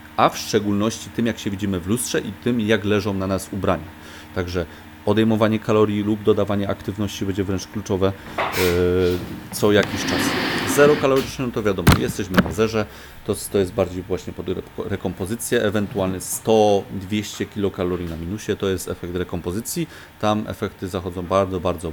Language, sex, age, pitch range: Polish, male, 30-49, 90-110 Hz